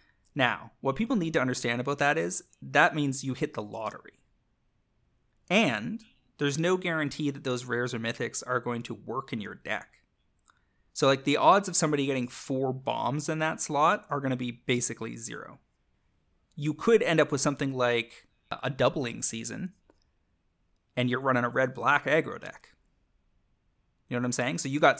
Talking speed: 180 wpm